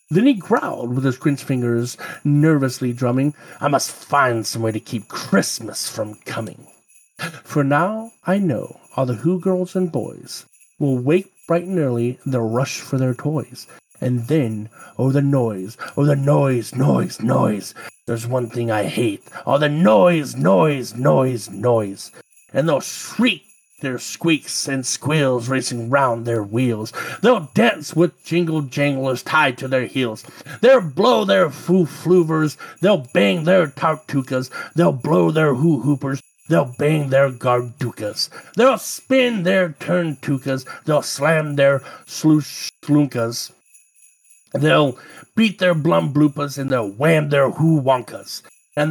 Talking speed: 140 wpm